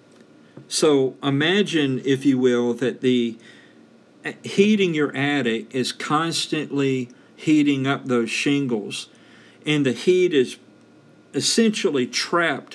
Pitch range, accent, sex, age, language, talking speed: 120-145 Hz, American, male, 50-69, English, 105 wpm